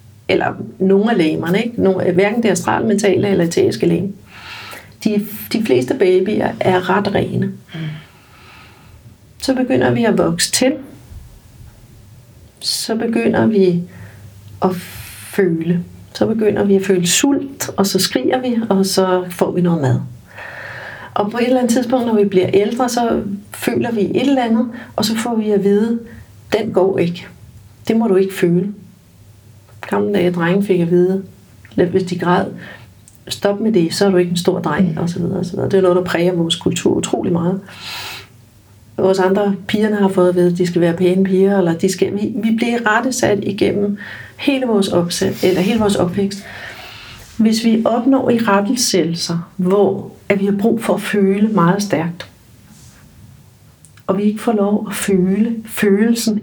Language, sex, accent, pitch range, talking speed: Danish, female, native, 175-215 Hz, 160 wpm